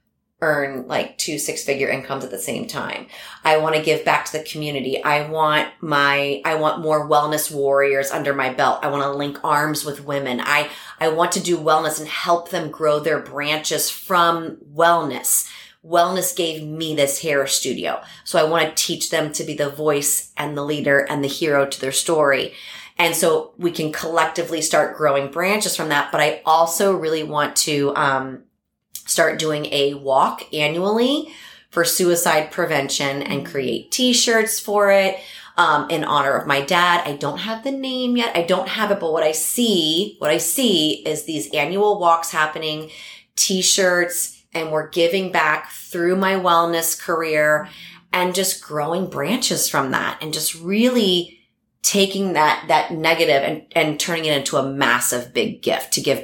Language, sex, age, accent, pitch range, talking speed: English, female, 30-49, American, 145-175 Hz, 175 wpm